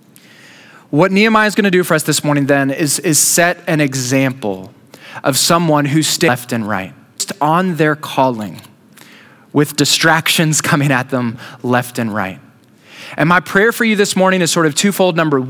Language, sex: English, male